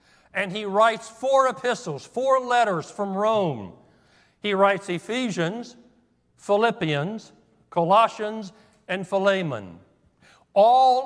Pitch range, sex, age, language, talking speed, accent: 165-210 Hz, male, 60-79, English, 90 wpm, American